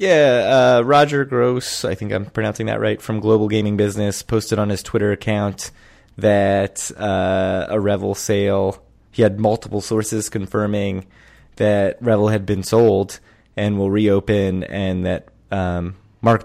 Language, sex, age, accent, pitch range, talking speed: English, male, 20-39, American, 95-110 Hz, 150 wpm